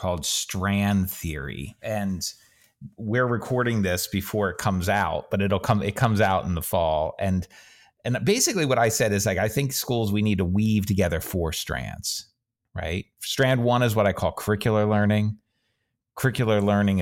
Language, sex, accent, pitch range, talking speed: English, male, American, 90-110 Hz, 175 wpm